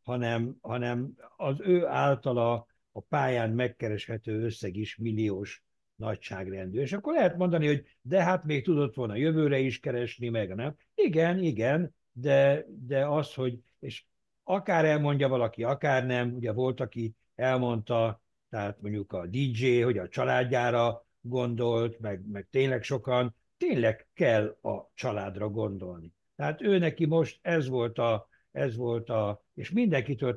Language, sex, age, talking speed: Hungarian, male, 60-79, 140 wpm